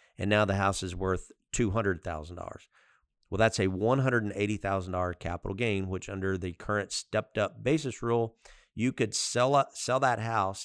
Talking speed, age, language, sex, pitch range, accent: 160 wpm, 40-59, English, male, 90-110 Hz, American